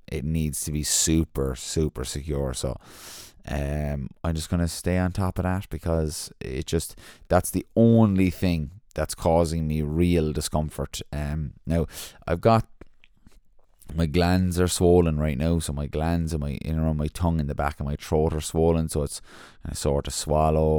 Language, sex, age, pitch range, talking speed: English, male, 20-39, 75-90 Hz, 180 wpm